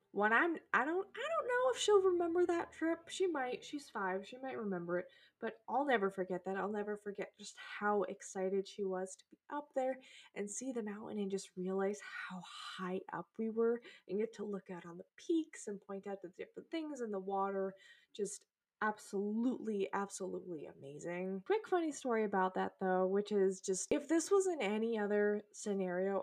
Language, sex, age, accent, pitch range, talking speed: English, female, 20-39, American, 190-245 Hz, 195 wpm